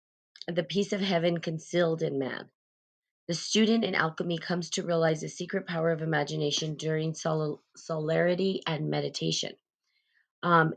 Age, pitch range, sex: 30-49, 155-180 Hz, female